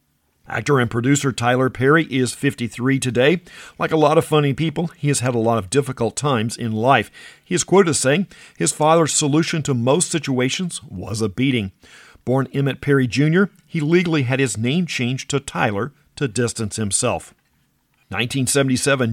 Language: English